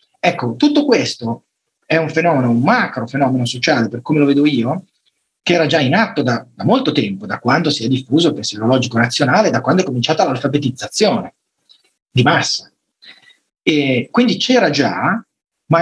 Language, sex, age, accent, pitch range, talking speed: Italian, male, 30-49, native, 125-175 Hz, 170 wpm